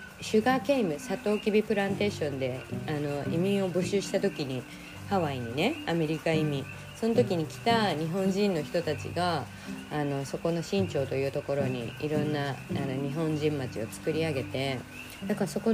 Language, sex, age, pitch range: Japanese, female, 20-39, 140-195 Hz